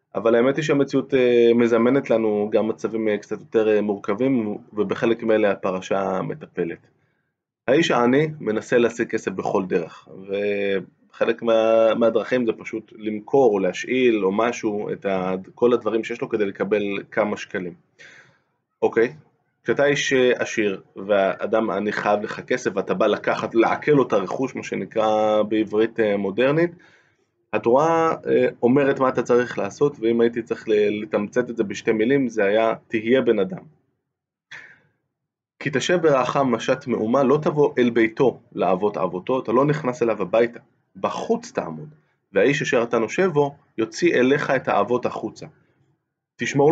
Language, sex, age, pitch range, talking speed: Hebrew, male, 20-39, 105-130 Hz, 140 wpm